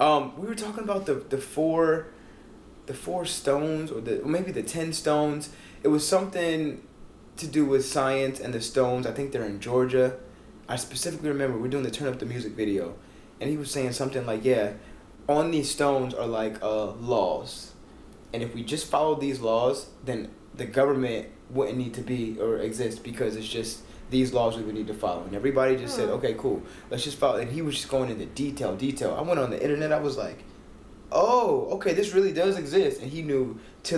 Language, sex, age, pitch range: English, male, 20-39, 110-145 Hz